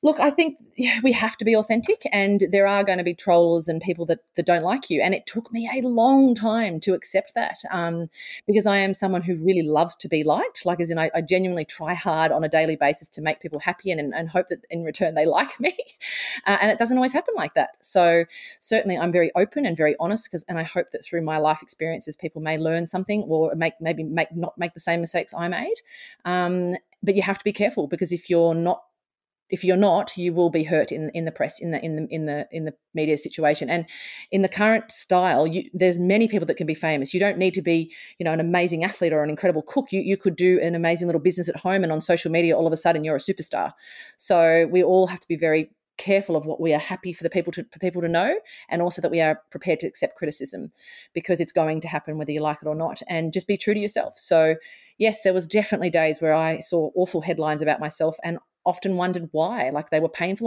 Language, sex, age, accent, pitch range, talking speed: English, female, 30-49, Australian, 165-200 Hz, 255 wpm